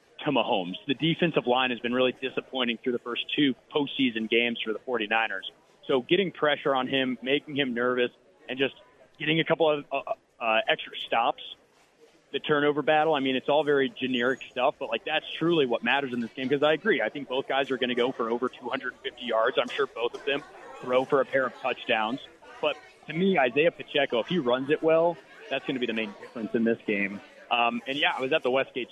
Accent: American